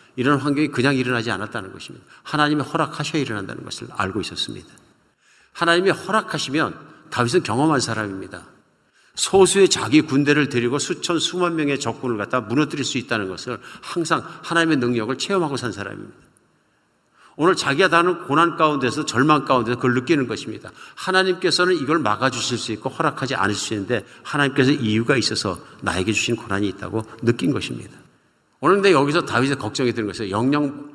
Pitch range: 115-150 Hz